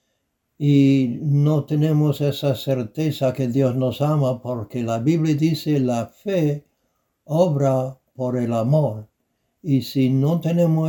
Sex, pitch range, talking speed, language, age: male, 130-155 Hz, 125 wpm, Spanish, 60-79